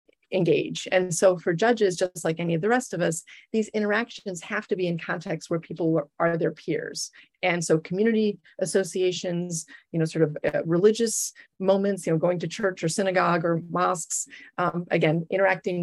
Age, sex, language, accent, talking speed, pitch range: 30-49, female, English, American, 180 wpm, 170-200 Hz